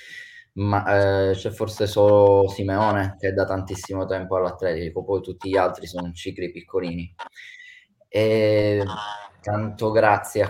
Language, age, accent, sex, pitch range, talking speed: Italian, 20-39, native, male, 90-110 Hz, 130 wpm